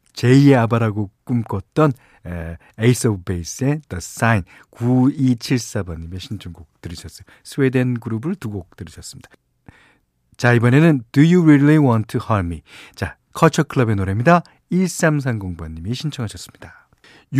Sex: male